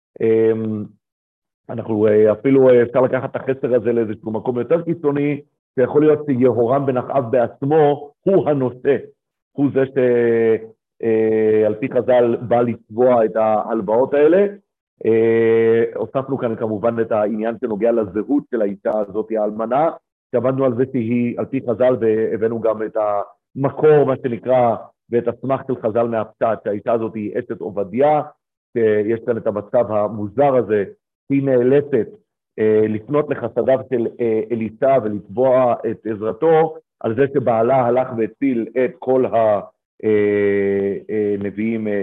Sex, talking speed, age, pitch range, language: male, 130 wpm, 50-69, 110-135 Hz, Hebrew